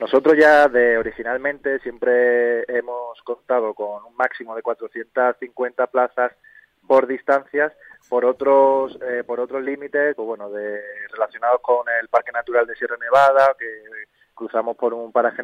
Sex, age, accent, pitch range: male, 20-39, Spanish, 115-135 Hz